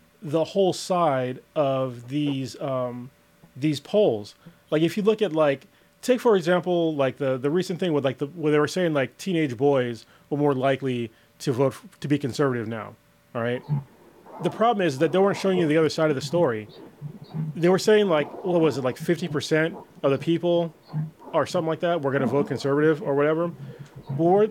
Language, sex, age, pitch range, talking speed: English, male, 30-49, 145-190 Hz, 200 wpm